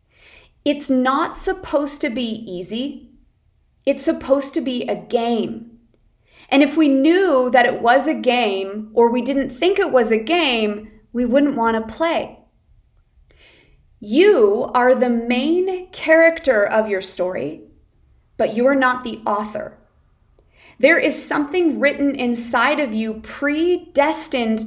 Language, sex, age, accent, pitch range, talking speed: English, female, 40-59, American, 215-285 Hz, 135 wpm